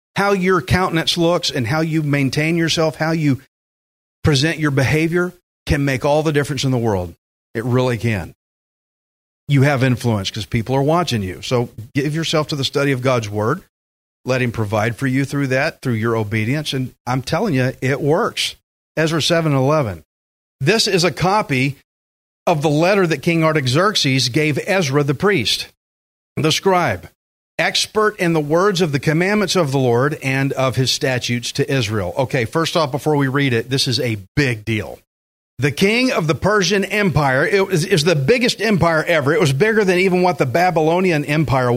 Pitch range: 125-170 Hz